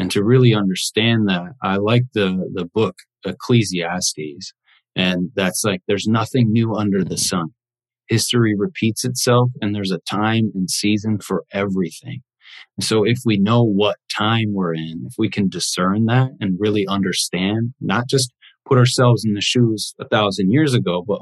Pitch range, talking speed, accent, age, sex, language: 100-125 Hz, 170 wpm, American, 40-59, male, English